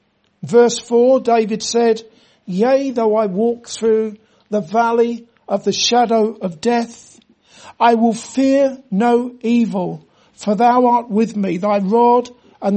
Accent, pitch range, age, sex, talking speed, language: British, 210-235 Hz, 60-79, male, 135 wpm, English